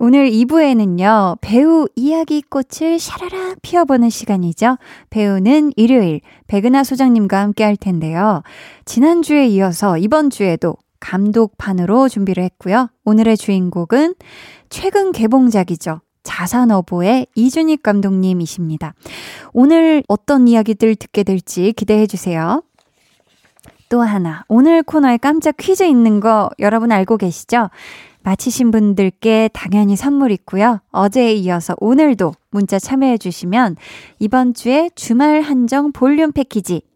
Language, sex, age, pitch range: Korean, female, 20-39, 195-275 Hz